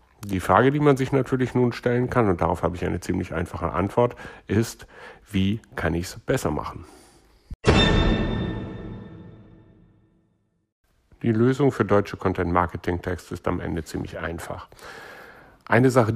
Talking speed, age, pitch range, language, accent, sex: 135 wpm, 60-79, 90-110 Hz, German, German, male